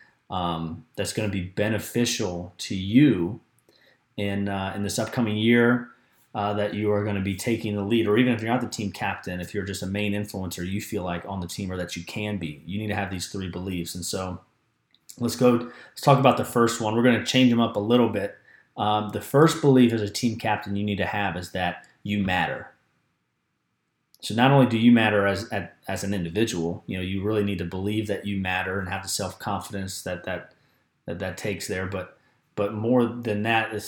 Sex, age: male, 30-49